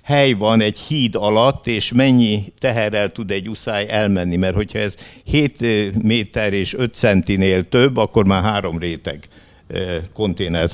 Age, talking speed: 60-79, 145 wpm